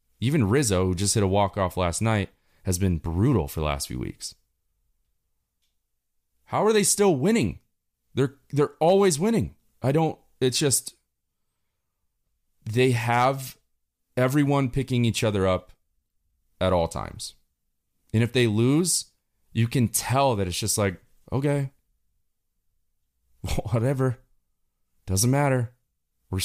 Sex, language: male, English